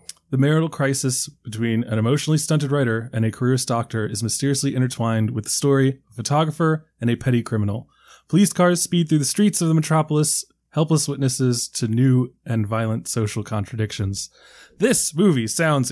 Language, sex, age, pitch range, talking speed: English, male, 20-39, 120-165 Hz, 170 wpm